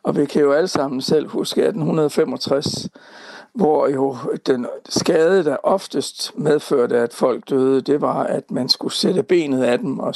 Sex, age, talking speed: male, 60-79, 170 wpm